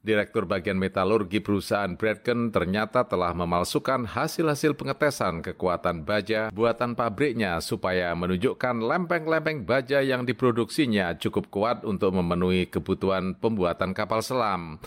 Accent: native